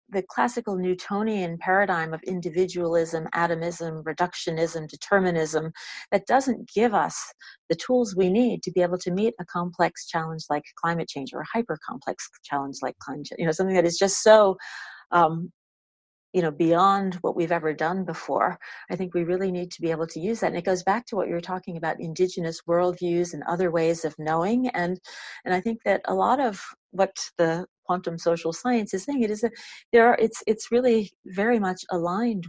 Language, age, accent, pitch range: English, 40-59, American, 165-190 Hz